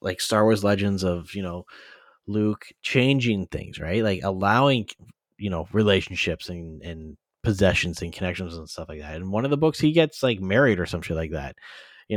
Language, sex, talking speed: English, male, 195 wpm